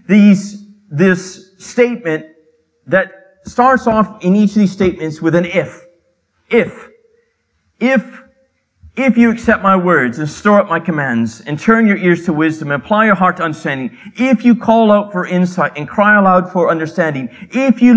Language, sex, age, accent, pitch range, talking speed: English, male, 40-59, American, 175-225 Hz, 170 wpm